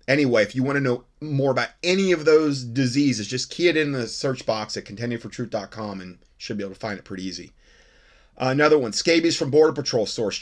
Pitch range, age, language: 105-145 Hz, 30-49, English